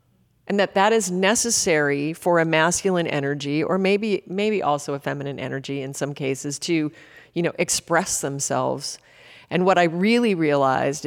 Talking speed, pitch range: 155 wpm, 145-200 Hz